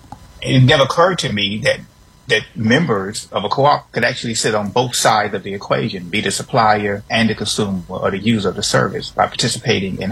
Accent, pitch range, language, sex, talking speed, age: American, 105-125 Hz, English, male, 215 wpm, 30-49